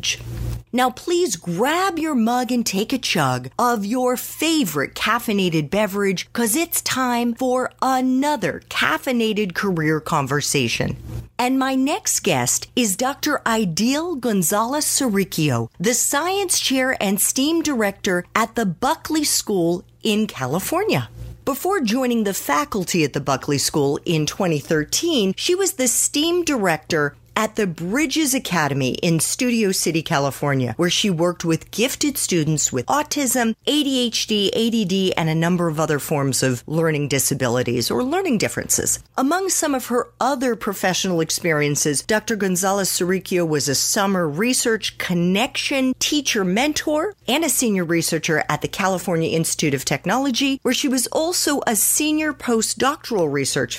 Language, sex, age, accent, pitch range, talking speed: English, female, 40-59, American, 160-260 Hz, 140 wpm